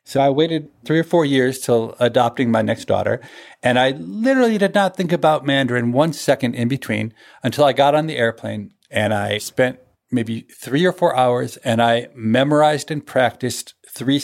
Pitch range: 120-165 Hz